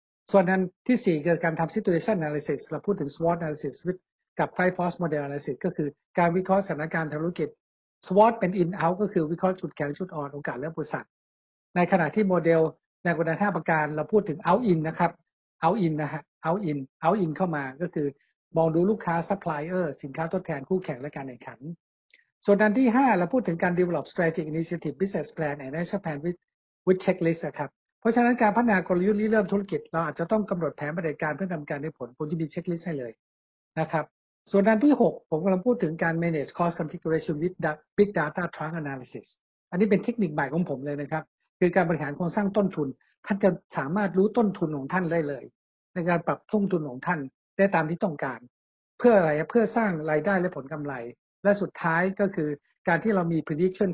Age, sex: 60-79, male